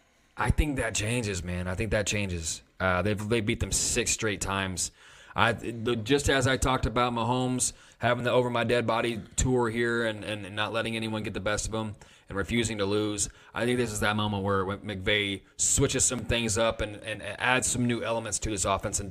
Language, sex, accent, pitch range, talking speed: English, male, American, 100-120 Hz, 200 wpm